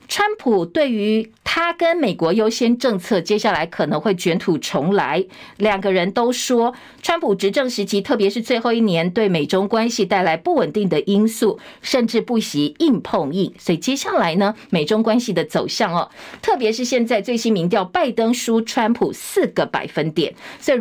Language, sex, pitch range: Chinese, female, 200-275 Hz